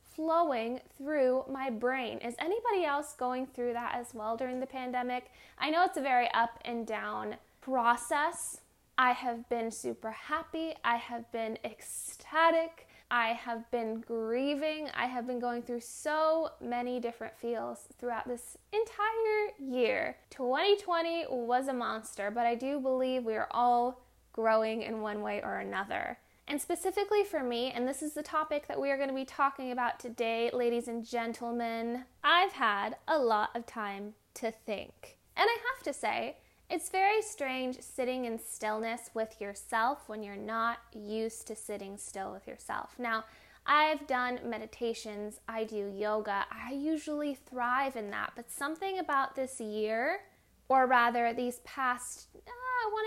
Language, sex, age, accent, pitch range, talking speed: English, female, 10-29, American, 230-290 Hz, 160 wpm